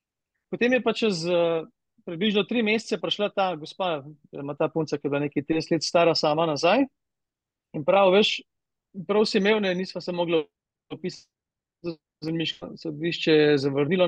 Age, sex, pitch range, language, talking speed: 30-49, male, 150-185 Hz, English, 150 wpm